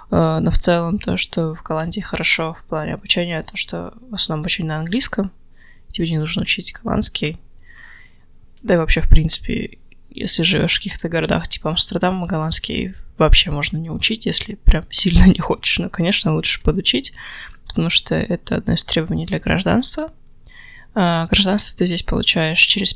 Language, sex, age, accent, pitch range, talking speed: Russian, female, 20-39, native, 165-215 Hz, 160 wpm